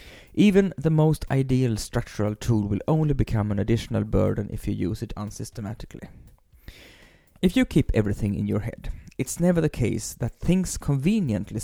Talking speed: 160 wpm